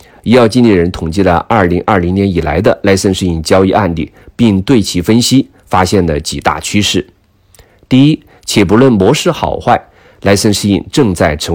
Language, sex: Chinese, male